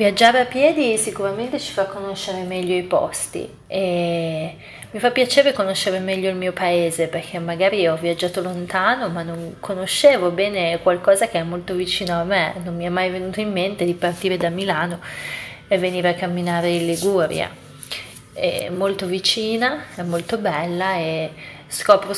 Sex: female